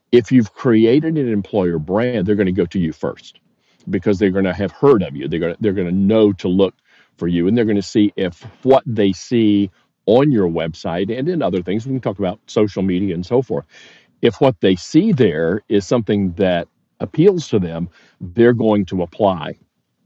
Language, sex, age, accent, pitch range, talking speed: English, male, 50-69, American, 95-120 Hz, 195 wpm